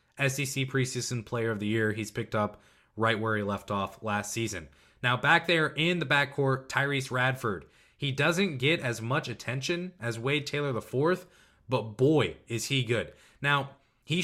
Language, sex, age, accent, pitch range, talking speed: English, male, 20-39, American, 115-150 Hz, 175 wpm